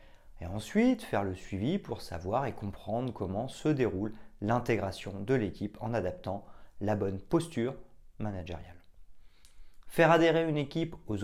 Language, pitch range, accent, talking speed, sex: French, 95-130 Hz, French, 140 wpm, male